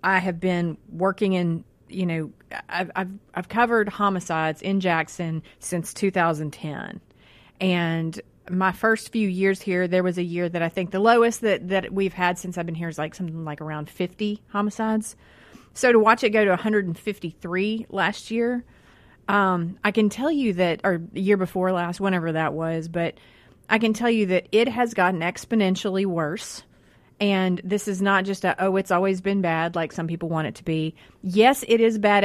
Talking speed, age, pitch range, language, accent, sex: 190 wpm, 30-49, 175-210 Hz, English, American, female